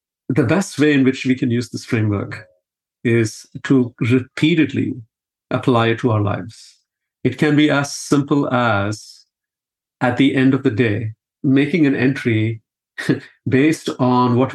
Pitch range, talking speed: 110-135 Hz, 150 wpm